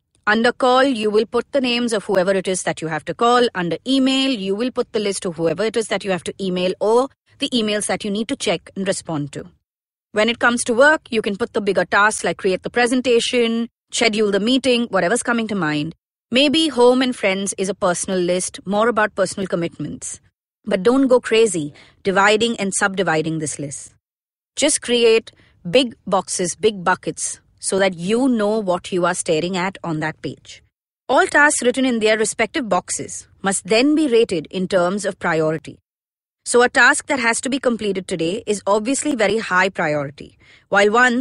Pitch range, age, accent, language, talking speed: 185-245 Hz, 30-49, Indian, English, 195 wpm